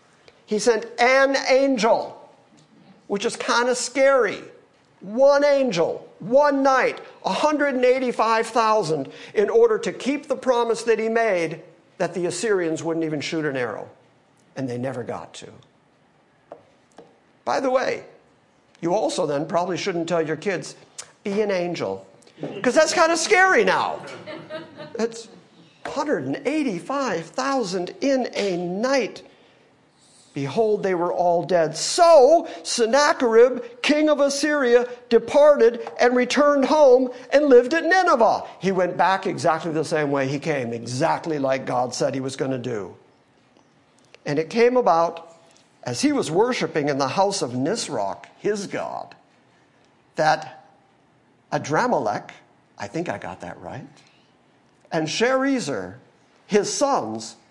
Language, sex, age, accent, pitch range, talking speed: English, male, 50-69, American, 165-270 Hz, 130 wpm